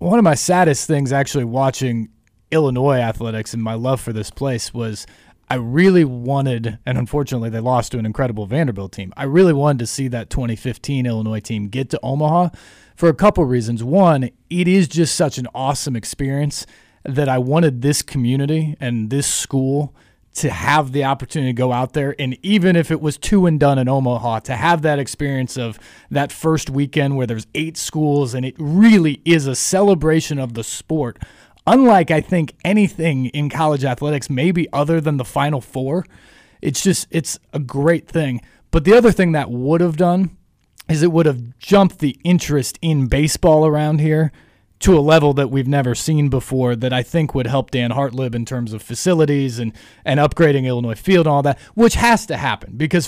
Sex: male